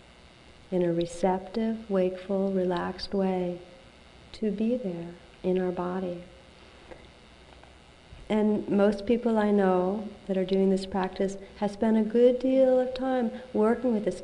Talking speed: 135 wpm